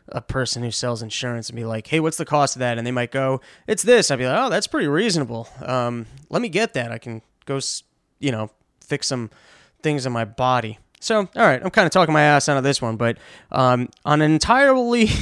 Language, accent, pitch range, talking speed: English, American, 125-155 Hz, 240 wpm